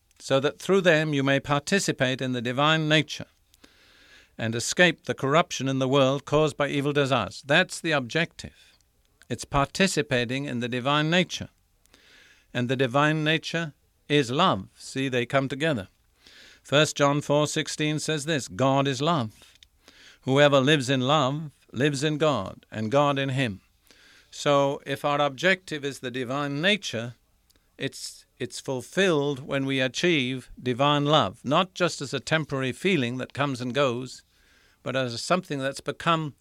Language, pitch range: English, 125-155 Hz